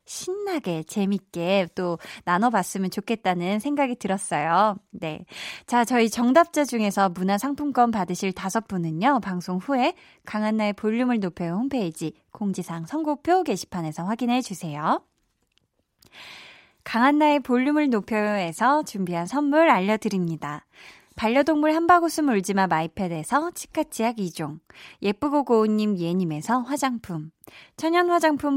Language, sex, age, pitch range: Korean, female, 20-39, 180-270 Hz